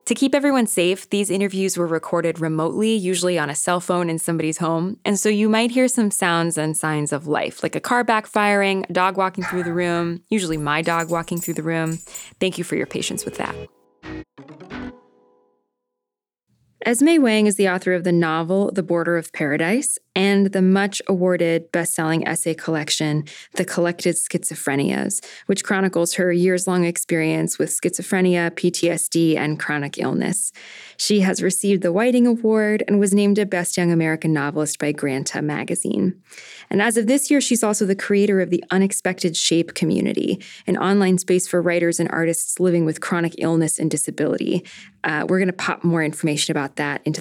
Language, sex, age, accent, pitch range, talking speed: English, female, 20-39, American, 160-195 Hz, 175 wpm